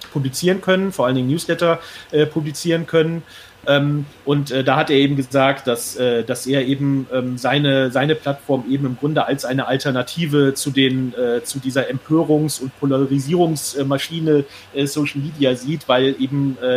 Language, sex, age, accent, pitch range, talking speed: English, male, 30-49, German, 130-150 Hz, 165 wpm